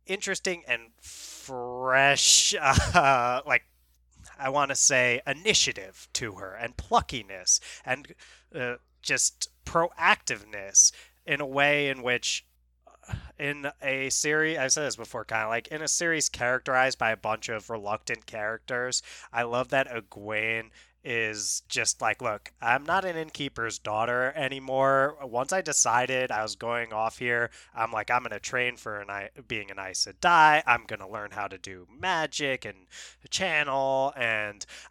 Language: English